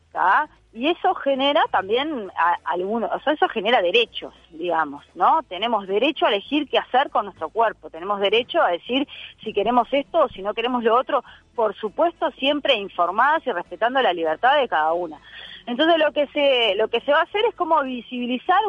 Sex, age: female, 30-49